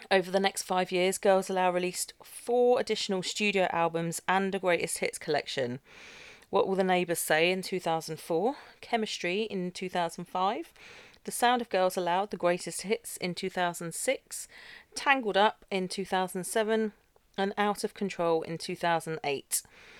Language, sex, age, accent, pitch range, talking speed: English, female, 40-59, British, 170-205 Hz, 140 wpm